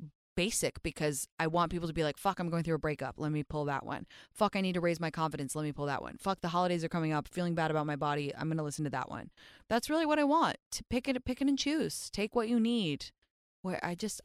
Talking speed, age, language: 280 wpm, 20-39, English